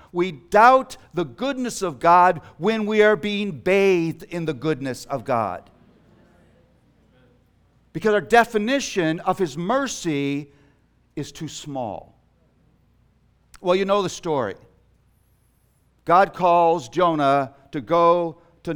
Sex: male